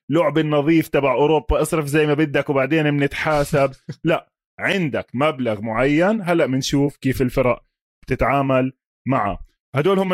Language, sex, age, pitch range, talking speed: Arabic, male, 20-39, 130-170 Hz, 130 wpm